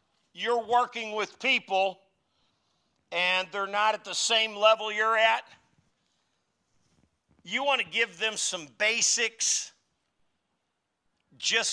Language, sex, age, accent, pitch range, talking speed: English, male, 50-69, American, 170-240 Hz, 105 wpm